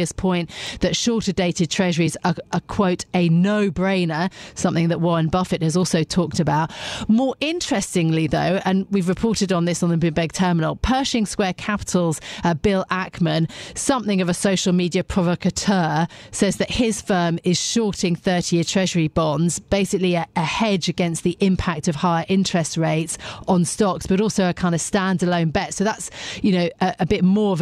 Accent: British